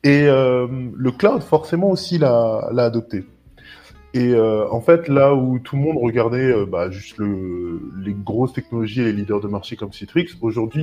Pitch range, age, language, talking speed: 105-130 Hz, 20-39, French, 175 wpm